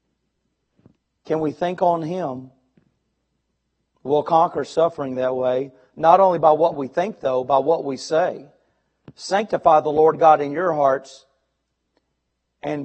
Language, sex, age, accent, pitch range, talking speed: English, male, 40-59, American, 135-180 Hz, 135 wpm